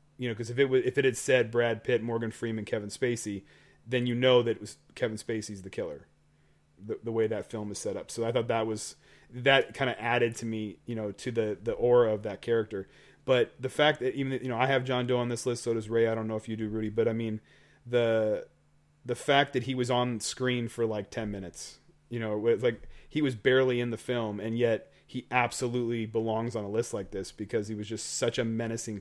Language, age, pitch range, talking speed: English, 30-49, 110-130 Hz, 250 wpm